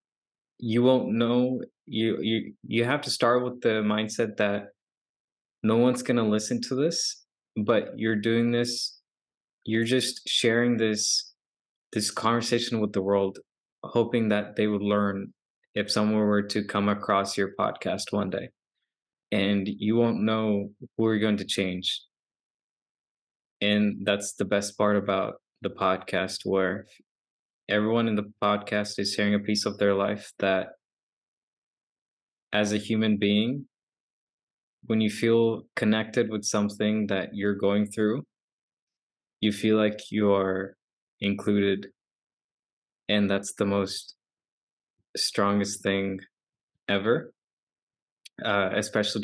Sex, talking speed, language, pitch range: male, 130 wpm, Telugu, 100-115 Hz